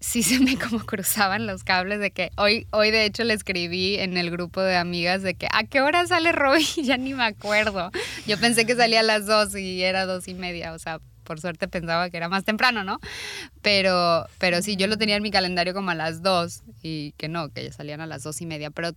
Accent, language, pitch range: Mexican, English, 170-205 Hz